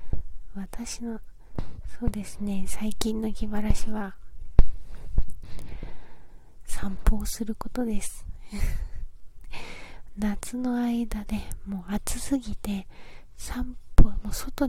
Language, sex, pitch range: Japanese, female, 190-220 Hz